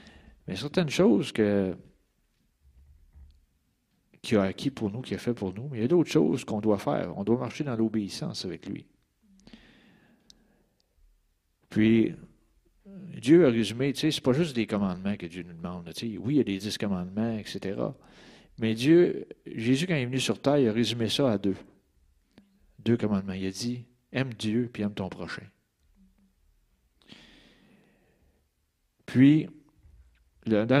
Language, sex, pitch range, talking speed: French, male, 90-140 Hz, 160 wpm